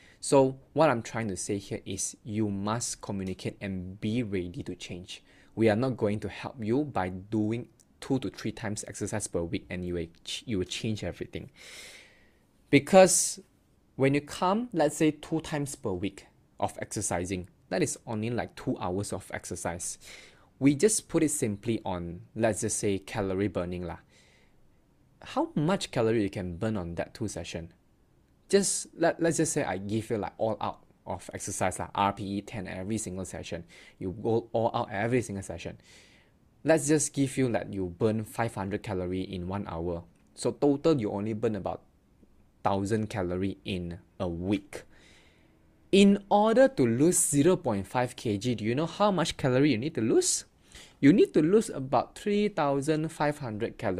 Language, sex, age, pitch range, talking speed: English, male, 20-39, 95-135 Hz, 165 wpm